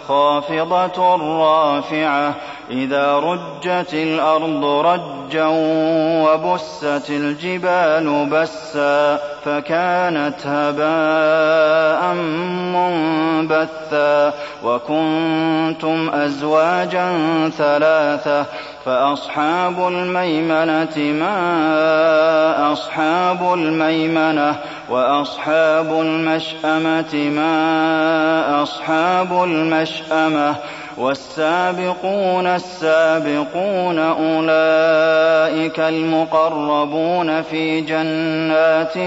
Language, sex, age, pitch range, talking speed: Arabic, male, 30-49, 150-160 Hz, 50 wpm